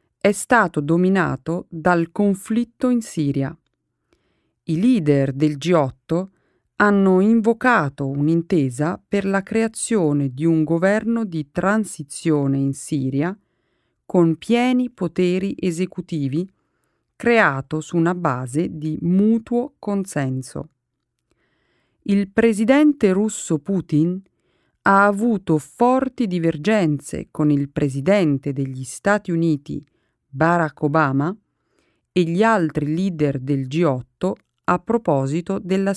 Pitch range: 150-205 Hz